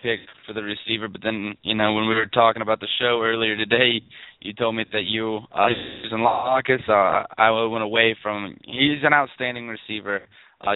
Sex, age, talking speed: male, 20-39, 185 wpm